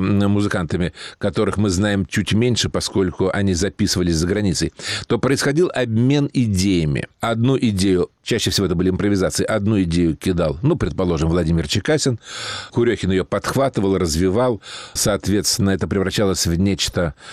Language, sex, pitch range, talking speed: Russian, male, 95-120 Hz, 130 wpm